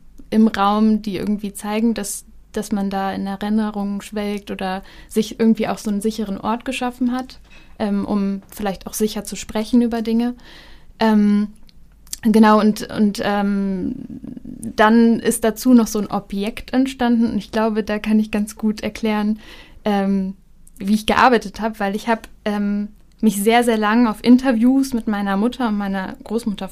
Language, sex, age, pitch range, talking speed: German, female, 10-29, 200-230 Hz, 165 wpm